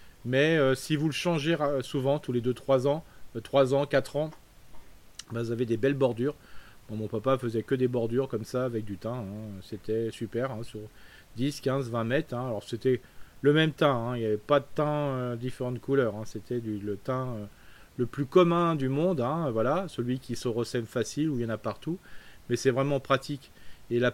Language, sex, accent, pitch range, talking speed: French, male, French, 115-140 Hz, 225 wpm